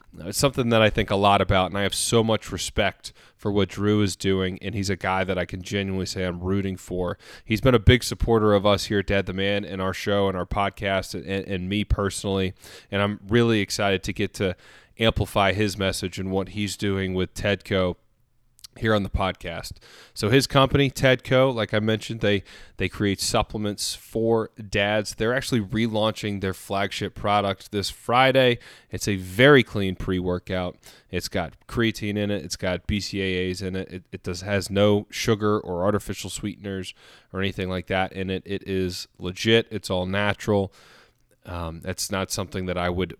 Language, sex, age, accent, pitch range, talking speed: English, male, 30-49, American, 95-110 Hz, 190 wpm